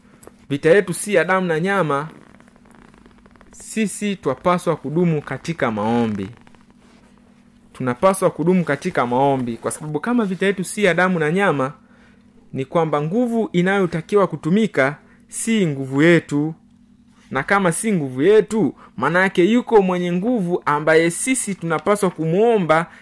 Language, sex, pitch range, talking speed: Swahili, male, 145-220 Hz, 125 wpm